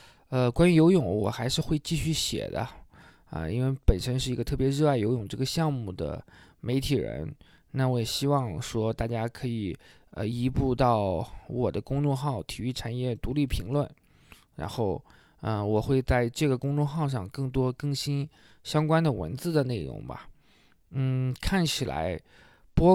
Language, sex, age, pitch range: Chinese, male, 20-39, 115-145 Hz